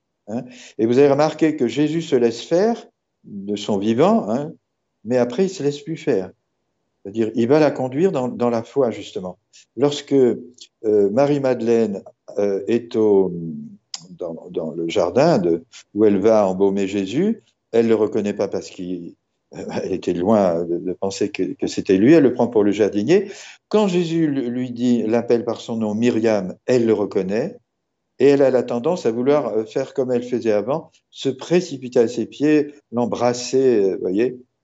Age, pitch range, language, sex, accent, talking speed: 60-79, 105-145 Hz, French, male, French, 175 wpm